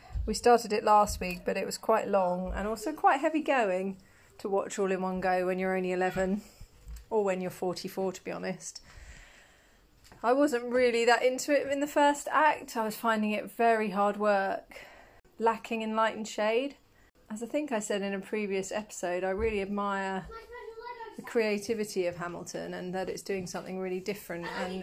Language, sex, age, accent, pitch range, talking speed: English, female, 30-49, British, 190-245 Hz, 190 wpm